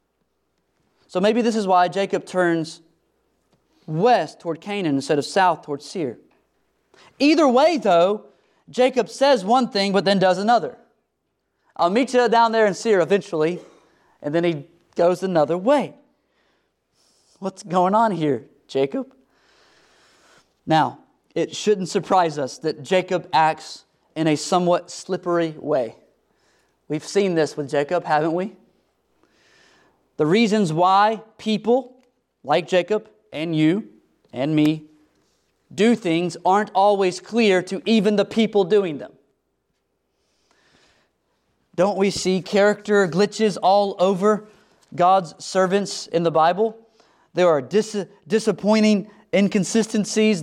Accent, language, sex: American, English, male